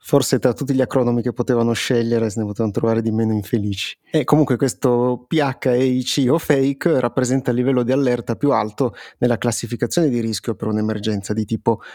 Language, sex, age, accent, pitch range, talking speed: Italian, male, 30-49, native, 115-130 Hz, 185 wpm